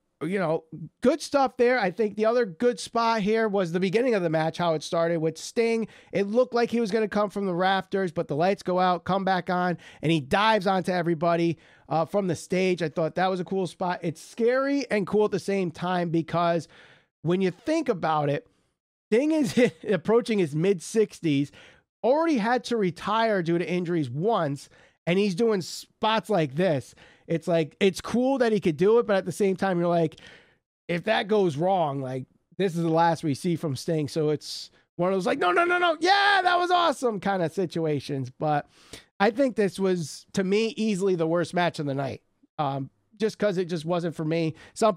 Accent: American